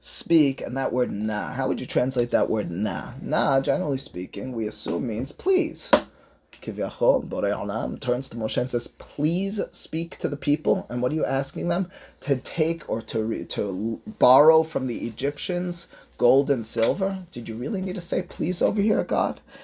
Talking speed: 175 wpm